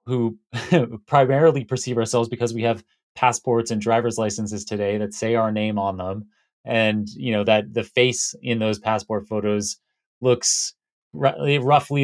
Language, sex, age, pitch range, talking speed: English, male, 30-49, 110-130 Hz, 150 wpm